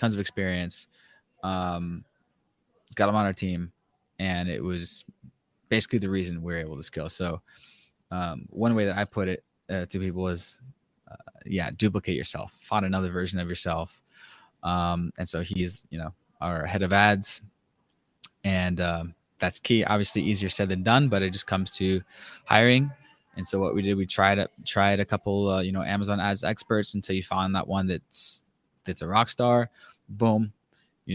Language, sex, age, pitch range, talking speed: English, male, 20-39, 90-100 Hz, 180 wpm